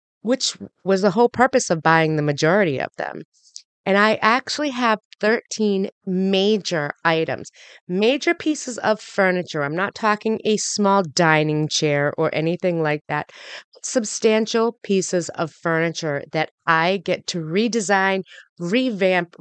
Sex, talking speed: female, 135 wpm